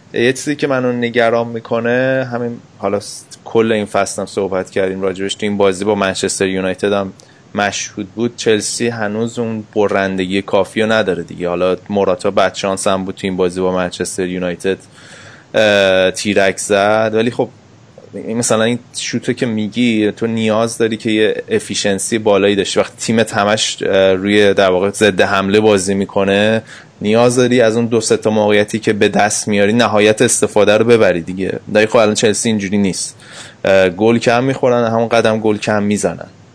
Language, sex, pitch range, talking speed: Persian, male, 95-110 Hz, 160 wpm